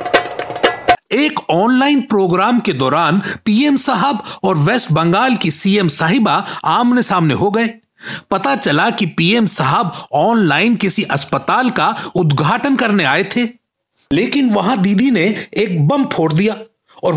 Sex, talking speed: male, 135 wpm